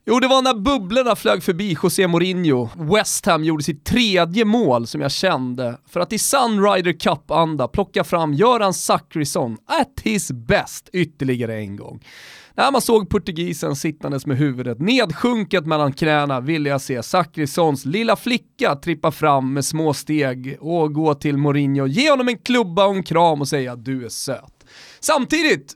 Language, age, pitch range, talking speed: Swedish, 30-49, 140-215 Hz, 170 wpm